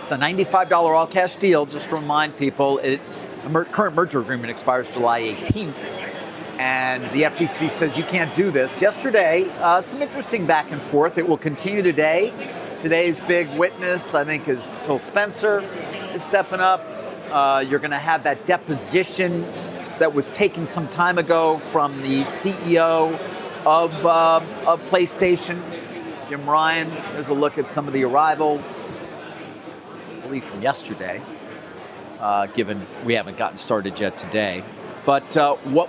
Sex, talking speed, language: male, 145 wpm, English